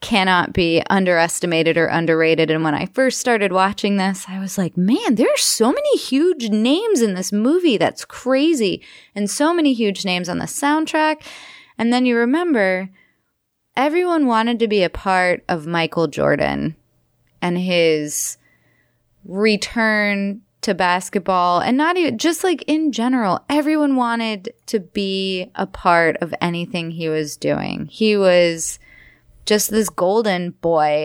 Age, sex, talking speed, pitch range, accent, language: 20-39, female, 150 wpm, 170-250 Hz, American, English